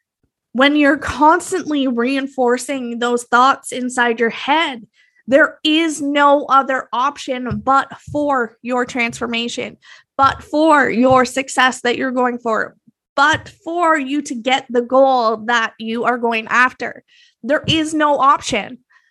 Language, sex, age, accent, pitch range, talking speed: English, female, 20-39, American, 240-305 Hz, 130 wpm